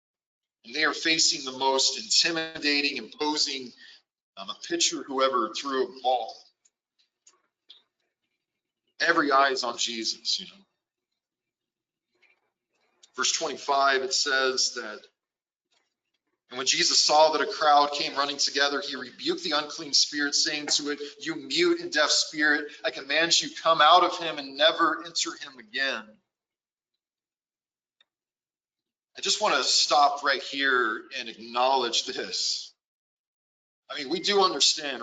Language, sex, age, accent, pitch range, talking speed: English, male, 40-59, American, 140-175 Hz, 130 wpm